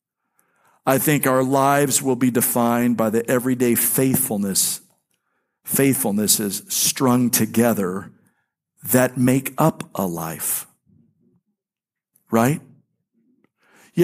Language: English